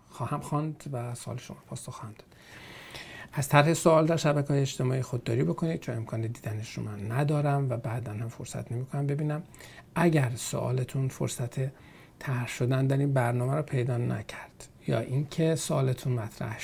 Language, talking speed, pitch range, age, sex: Persian, 150 wpm, 115-140 Hz, 50-69, male